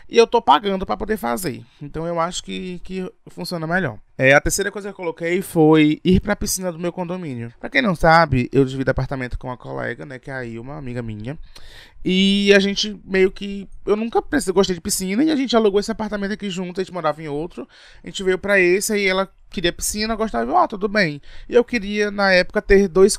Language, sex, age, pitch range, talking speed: Portuguese, male, 20-39, 145-205 Hz, 230 wpm